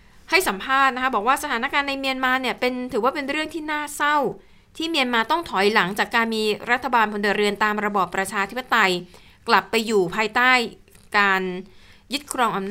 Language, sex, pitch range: Thai, female, 190-245 Hz